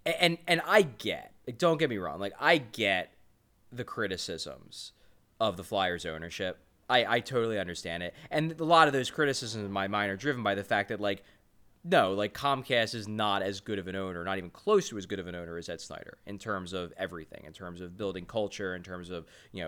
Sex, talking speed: male, 225 wpm